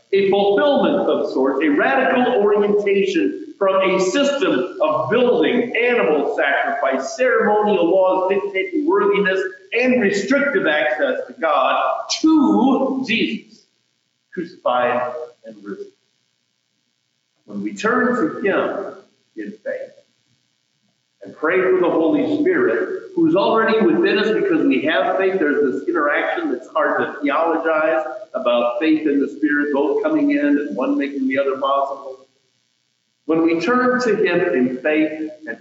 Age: 50-69